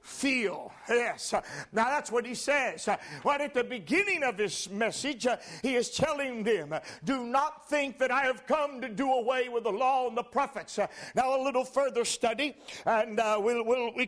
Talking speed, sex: 190 wpm, male